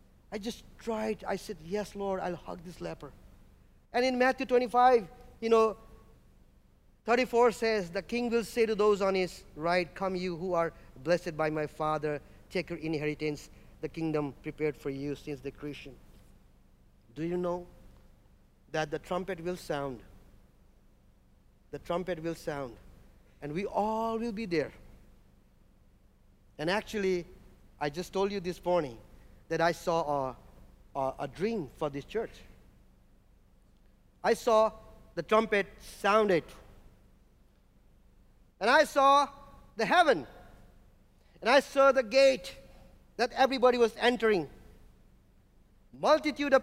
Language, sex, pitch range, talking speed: English, male, 155-235 Hz, 135 wpm